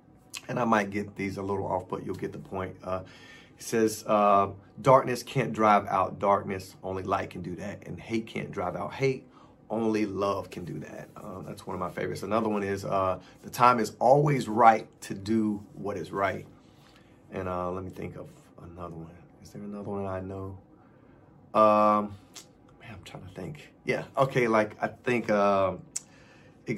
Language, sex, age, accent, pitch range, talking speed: English, male, 30-49, American, 95-115 Hz, 190 wpm